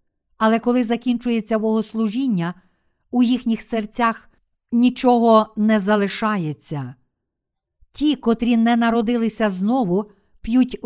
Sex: female